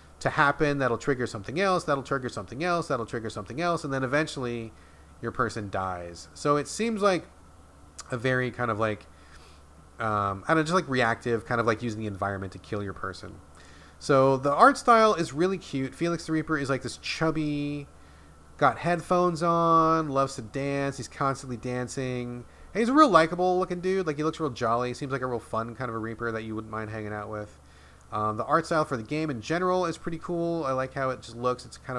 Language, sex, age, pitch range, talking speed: English, male, 30-49, 105-150 Hz, 215 wpm